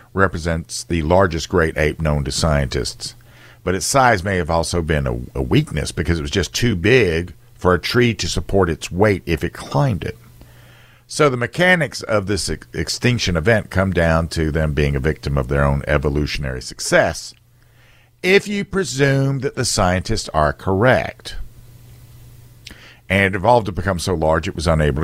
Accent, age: American, 50-69